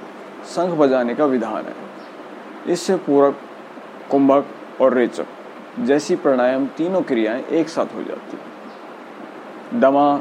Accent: native